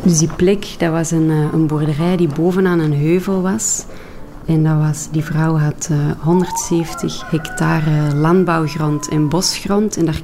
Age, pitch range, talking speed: 30-49, 155-180 Hz, 160 wpm